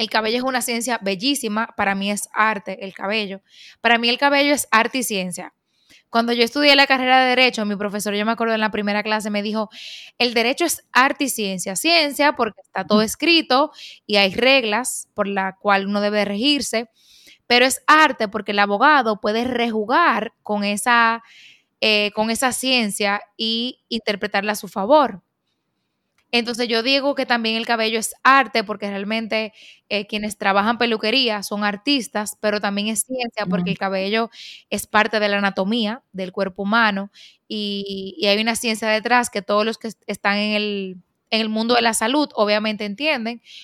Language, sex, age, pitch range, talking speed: Spanish, female, 10-29, 205-240 Hz, 175 wpm